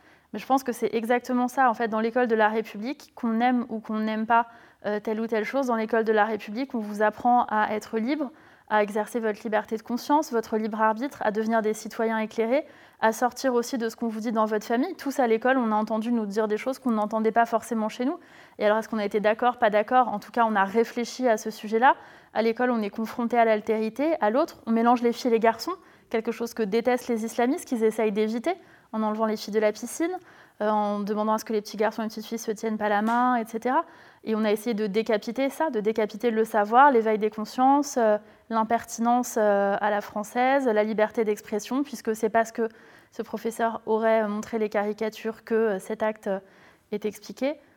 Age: 20-39